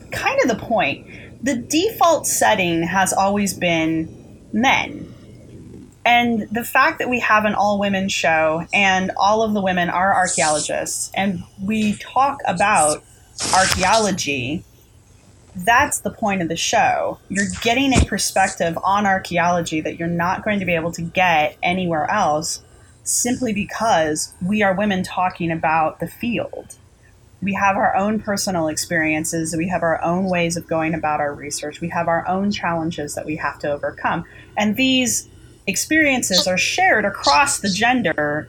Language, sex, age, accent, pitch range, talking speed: English, female, 30-49, American, 155-205 Hz, 155 wpm